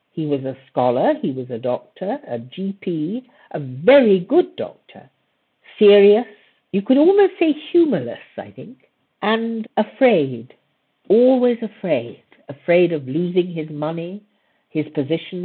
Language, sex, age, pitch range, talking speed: English, female, 60-79, 150-240 Hz, 130 wpm